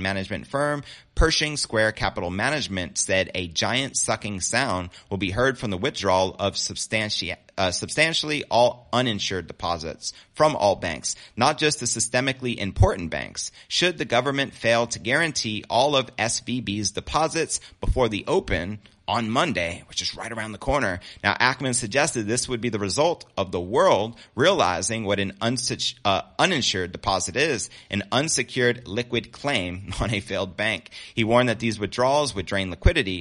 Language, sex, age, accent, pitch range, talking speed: English, male, 30-49, American, 95-125 Hz, 165 wpm